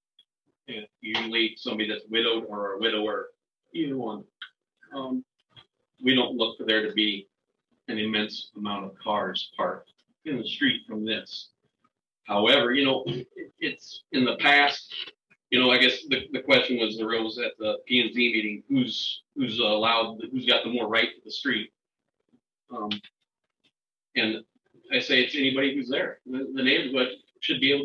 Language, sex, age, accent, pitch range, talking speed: English, male, 40-59, American, 110-140 Hz, 165 wpm